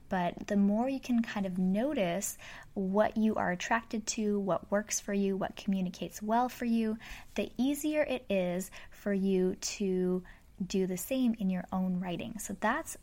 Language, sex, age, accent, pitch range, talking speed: English, female, 10-29, American, 185-220 Hz, 175 wpm